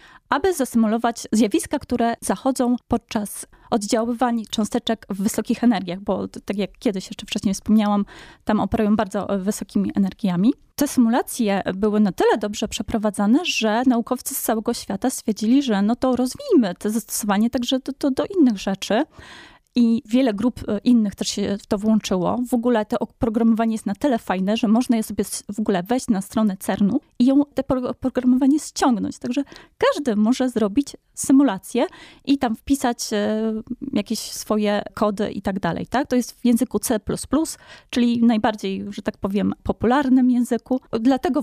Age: 20-39